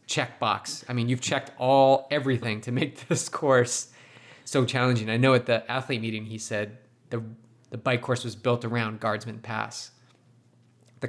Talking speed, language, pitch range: 160 wpm, English, 115-130 Hz